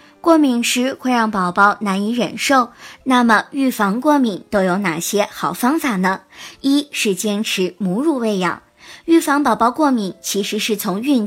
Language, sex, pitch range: Chinese, male, 195-255 Hz